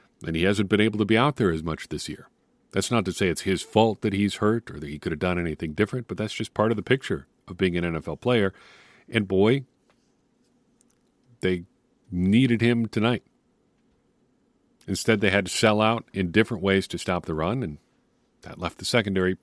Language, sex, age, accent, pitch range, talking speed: English, male, 40-59, American, 90-115 Hz, 205 wpm